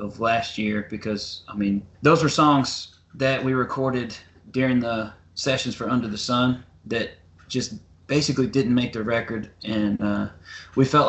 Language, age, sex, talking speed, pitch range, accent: English, 20-39, male, 160 wpm, 110-130 Hz, American